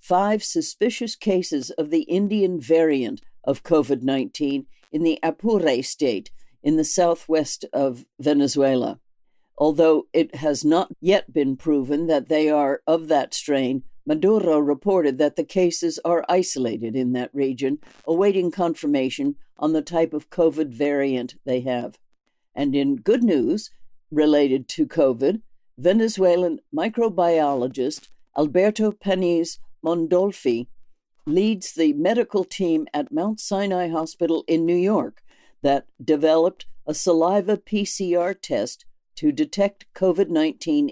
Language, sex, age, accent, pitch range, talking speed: English, female, 60-79, American, 145-190 Hz, 125 wpm